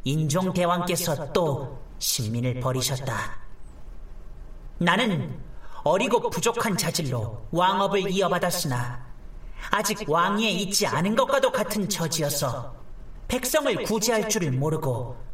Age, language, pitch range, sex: 40-59, Korean, 130-215 Hz, male